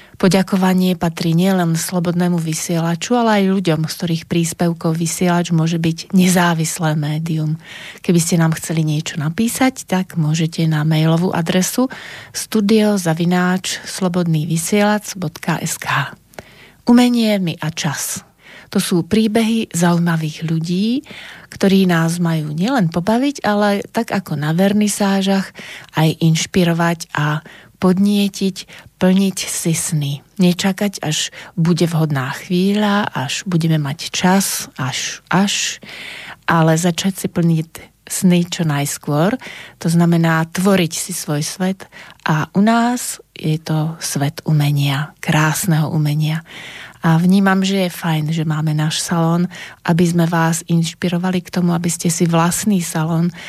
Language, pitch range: Slovak, 160-190 Hz